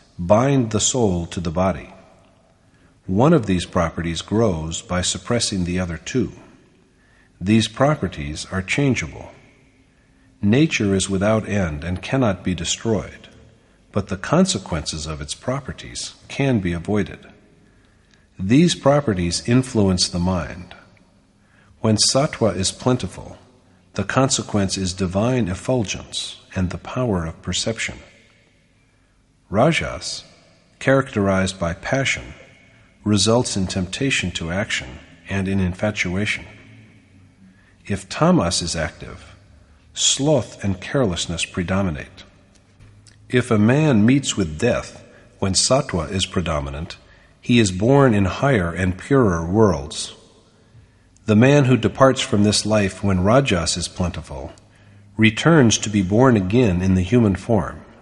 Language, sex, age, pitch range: English, male, 50-69, 90-115 Hz